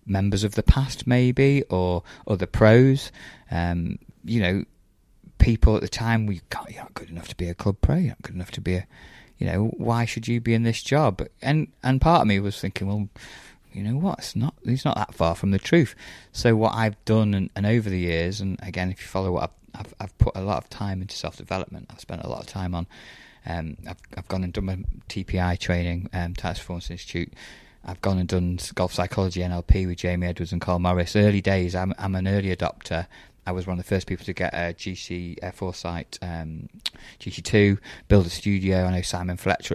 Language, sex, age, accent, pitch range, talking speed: English, male, 20-39, British, 90-105 Hz, 225 wpm